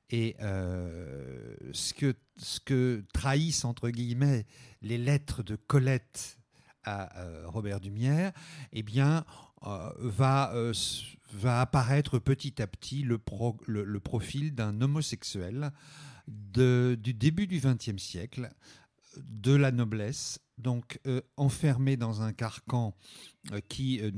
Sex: male